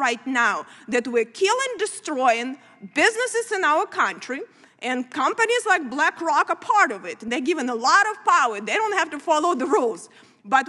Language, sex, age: English, female, 30-49